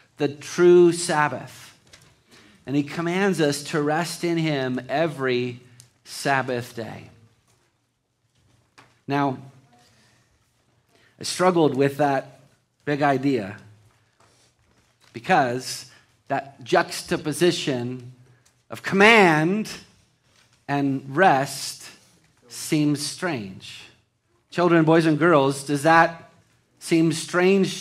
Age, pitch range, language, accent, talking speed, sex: 40-59, 125-175 Hz, English, American, 80 wpm, male